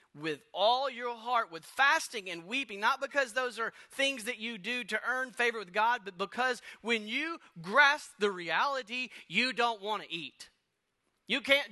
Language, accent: English, American